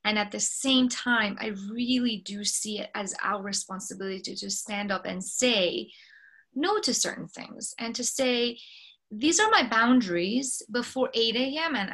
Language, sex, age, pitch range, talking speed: English, female, 20-39, 200-250 Hz, 170 wpm